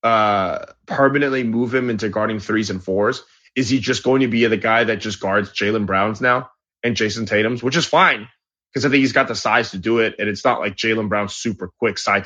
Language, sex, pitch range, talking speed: English, male, 110-140 Hz, 235 wpm